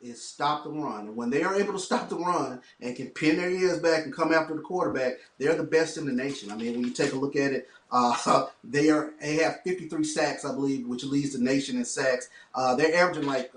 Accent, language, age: American, English, 30-49